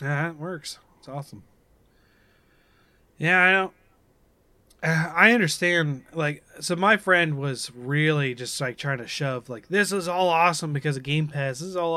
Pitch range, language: 130-165 Hz, English